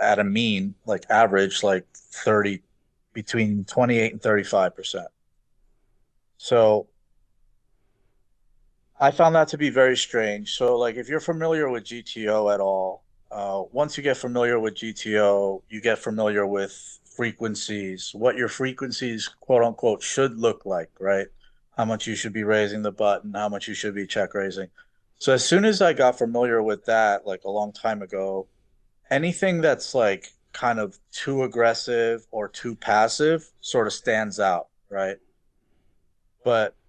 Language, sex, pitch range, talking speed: English, male, 100-125 Hz, 155 wpm